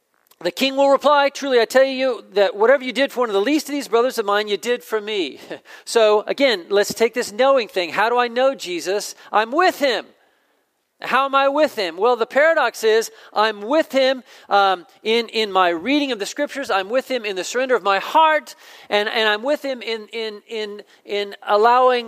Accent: American